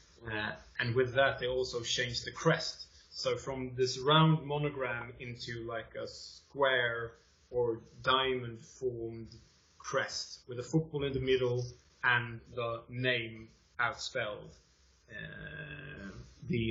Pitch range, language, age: 115-140 Hz, English, 20-39